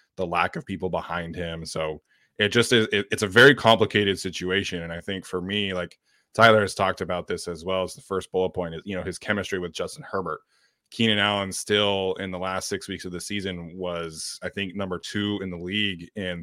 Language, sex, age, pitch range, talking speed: English, male, 20-39, 90-105 Hz, 225 wpm